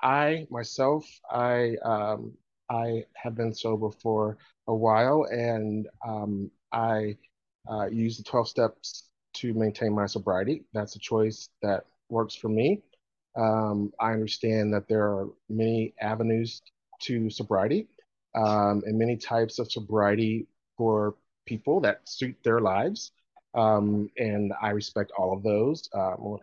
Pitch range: 105-120 Hz